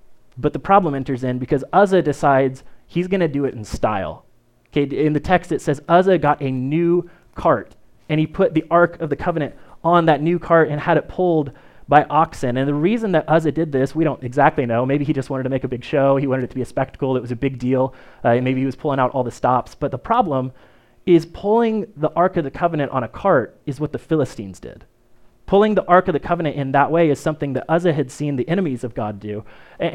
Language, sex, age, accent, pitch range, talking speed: English, male, 30-49, American, 135-170 Hz, 250 wpm